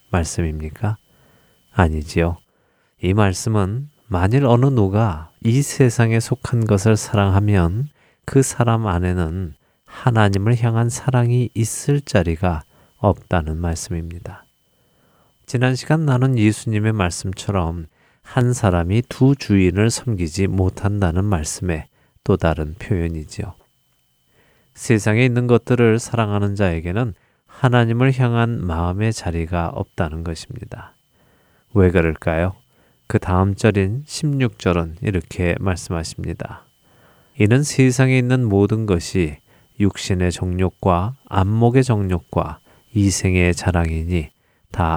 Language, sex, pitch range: Korean, male, 85-120 Hz